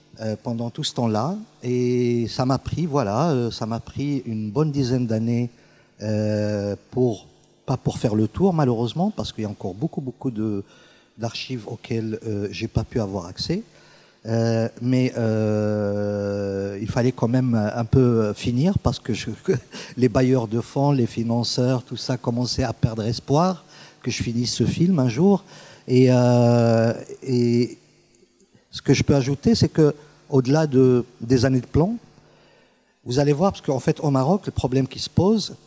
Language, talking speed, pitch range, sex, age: French, 180 wpm, 115-150 Hz, male, 50-69